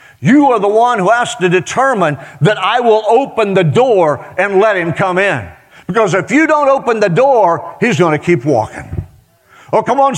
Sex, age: male, 50-69